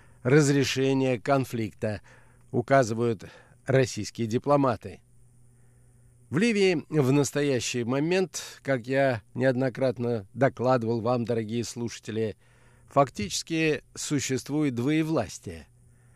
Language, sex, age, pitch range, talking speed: Russian, male, 50-69, 120-145 Hz, 75 wpm